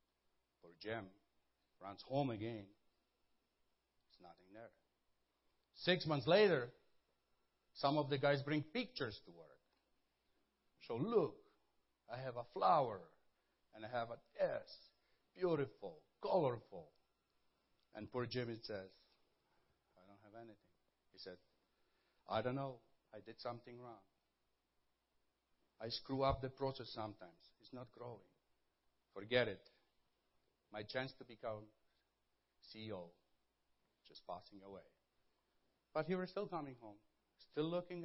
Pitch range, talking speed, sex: 105-135 Hz, 125 wpm, male